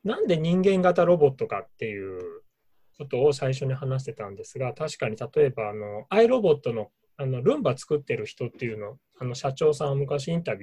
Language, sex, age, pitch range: Japanese, male, 20-39, 130-190 Hz